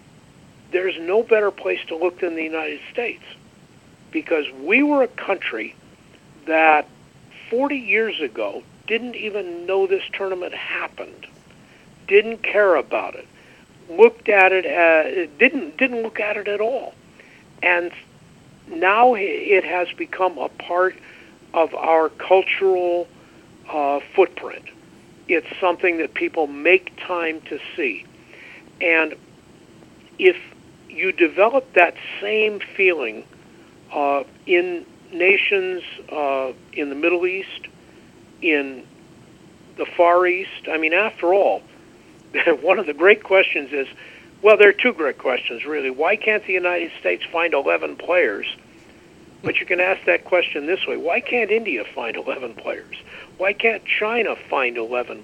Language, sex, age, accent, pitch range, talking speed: English, male, 60-79, American, 175-280 Hz, 135 wpm